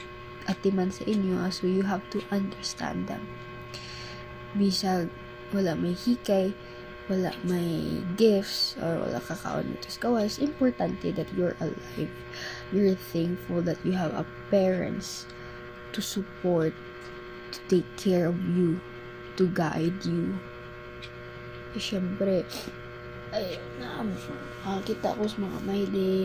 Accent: native